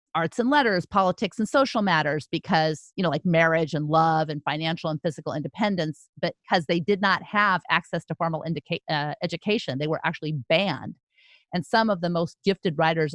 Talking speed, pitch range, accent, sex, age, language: 190 wpm, 160-195 Hz, American, female, 40-59, English